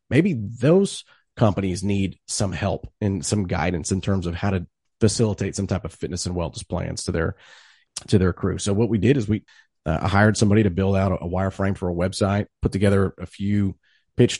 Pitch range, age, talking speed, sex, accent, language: 90-110 Hz, 30-49, 205 wpm, male, American, English